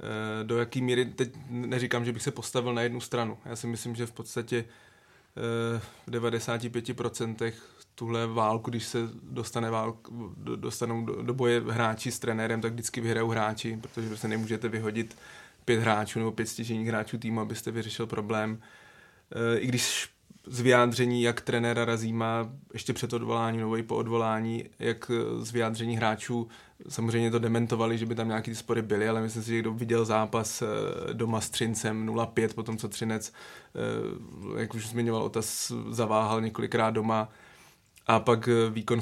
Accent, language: native, Czech